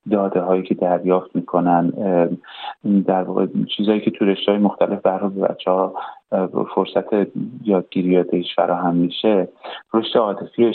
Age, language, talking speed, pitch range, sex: 30-49, Persian, 125 wpm, 90-100 Hz, male